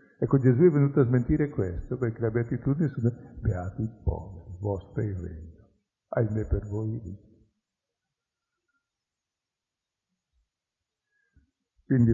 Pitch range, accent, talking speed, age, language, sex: 100-125 Hz, native, 115 wpm, 50-69, Italian, male